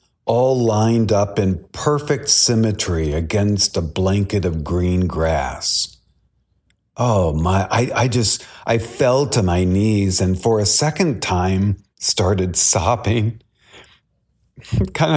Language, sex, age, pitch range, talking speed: English, male, 40-59, 100-125 Hz, 120 wpm